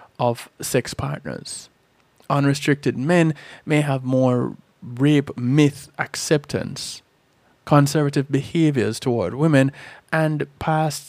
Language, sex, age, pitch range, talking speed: English, male, 20-39, 125-150 Hz, 90 wpm